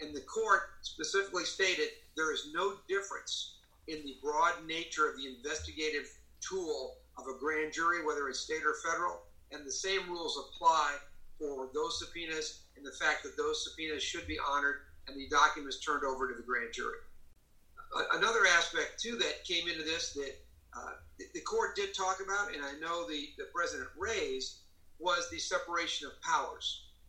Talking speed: 175 wpm